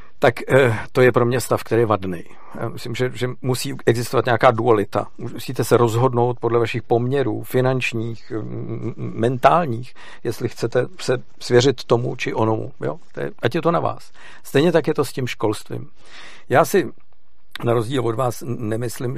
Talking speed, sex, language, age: 155 wpm, male, Czech, 50-69